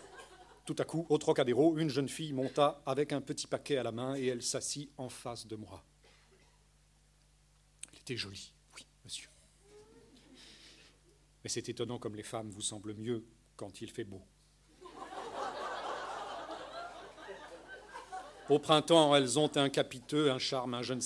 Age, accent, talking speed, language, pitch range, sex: 40-59, French, 150 wpm, French, 110-140 Hz, male